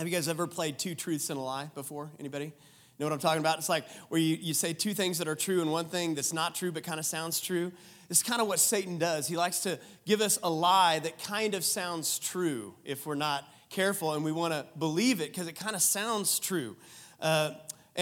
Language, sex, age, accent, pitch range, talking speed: English, male, 30-49, American, 160-225 Hz, 250 wpm